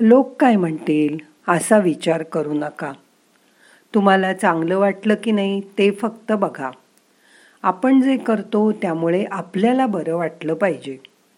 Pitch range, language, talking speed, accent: 165-225 Hz, Marathi, 120 wpm, native